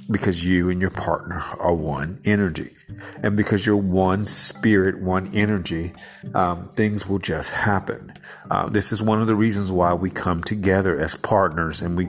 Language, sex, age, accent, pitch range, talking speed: English, male, 50-69, American, 90-110 Hz, 175 wpm